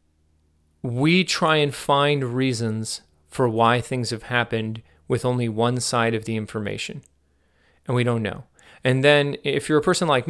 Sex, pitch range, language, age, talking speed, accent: male, 110-130 Hz, English, 30-49, 165 wpm, American